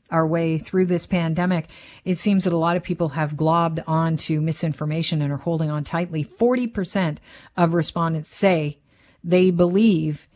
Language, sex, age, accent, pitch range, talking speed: English, female, 50-69, American, 165-195 Hz, 160 wpm